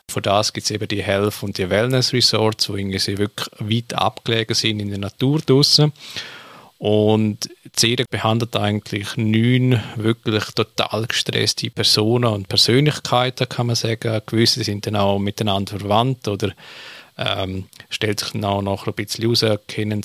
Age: 40-59